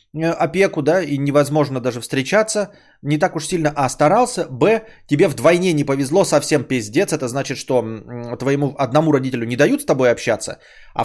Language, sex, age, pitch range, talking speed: Bulgarian, male, 30-49, 125-185 Hz, 170 wpm